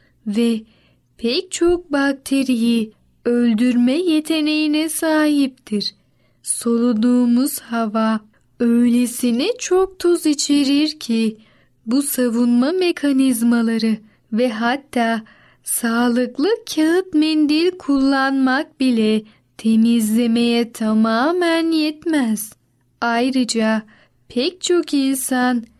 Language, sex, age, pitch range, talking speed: Turkish, female, 10-29, 230-300 Hz, 70 wpm